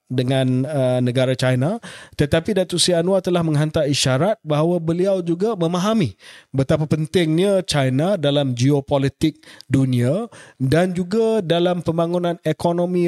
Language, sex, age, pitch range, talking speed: Malay, male, 30-49, 130-175 Hz, 115 wpm